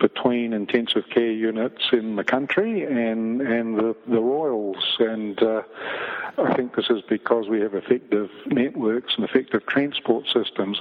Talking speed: 150 wpm